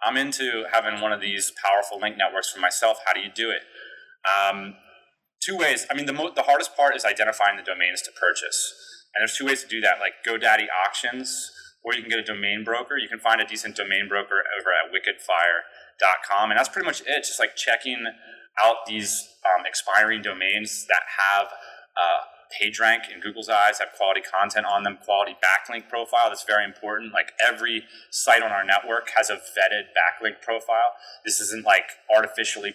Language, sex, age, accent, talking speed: English, male, 30-49, American, 195 wpm